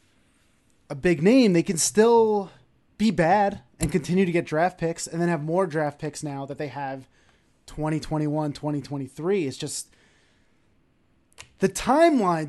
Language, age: English, 20-39